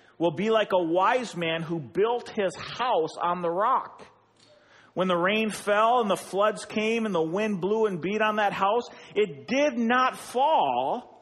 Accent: American